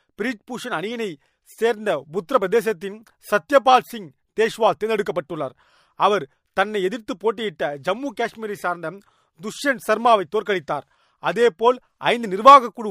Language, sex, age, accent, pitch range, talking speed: Tamil, male, 40-59, native, 195-240 Hz, 100 wpm